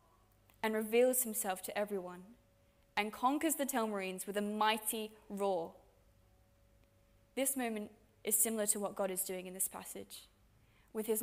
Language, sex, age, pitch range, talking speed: English, female, 20-39, 185-235 Hz, 145 wpm